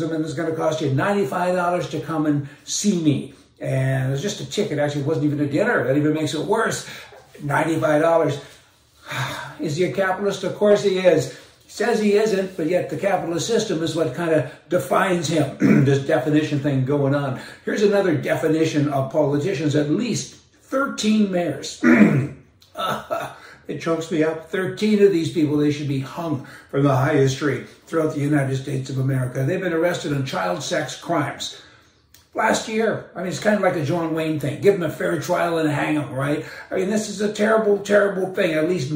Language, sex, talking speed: English, male, 195 wpm